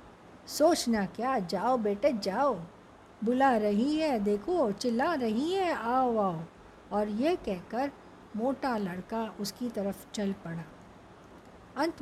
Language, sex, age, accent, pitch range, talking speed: Hindi, female, 50-69, native, 210-270 Hz, 125 wpm